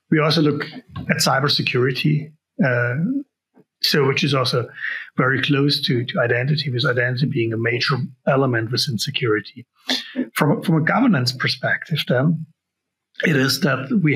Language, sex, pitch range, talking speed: English, male, 120-155 Hz, 140 wpm